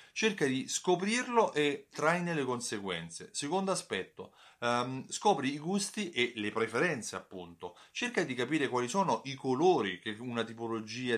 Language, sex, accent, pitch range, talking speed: Italian, male, native, 110-150 Hz, 145 wpm